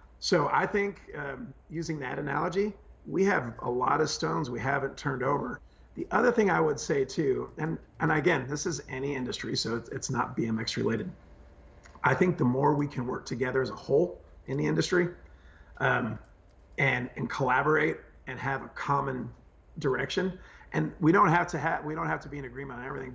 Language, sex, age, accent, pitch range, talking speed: English, male, 40-59, American, 130-170 Hz, 195 wpm